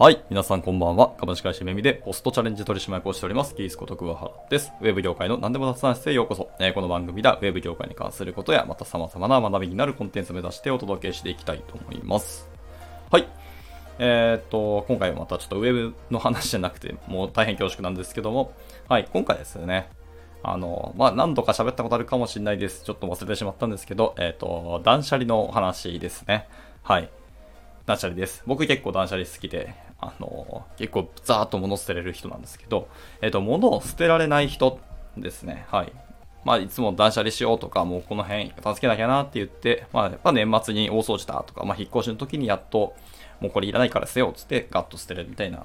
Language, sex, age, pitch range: Japanese, male, 20-39, 90-115 Hz